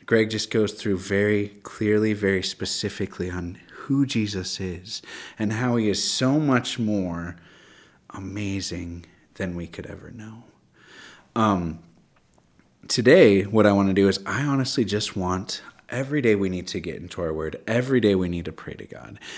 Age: 30-49